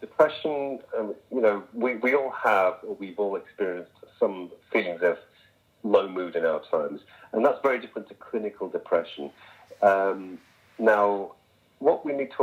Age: 40-59